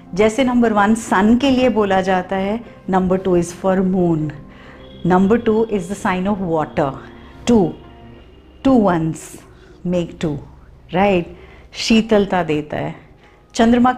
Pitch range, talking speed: 180-245 Hz, 135 wpm